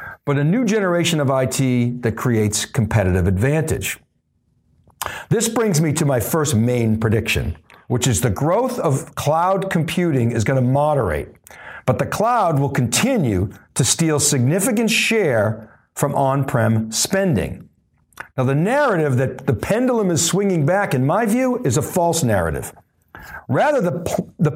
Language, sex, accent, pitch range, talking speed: English, male, American, 125-170 Hz, 145 wpm